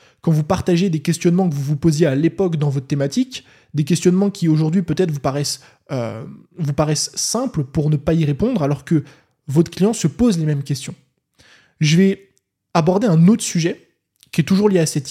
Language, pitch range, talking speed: French, 145-180 Hz, 205 wpm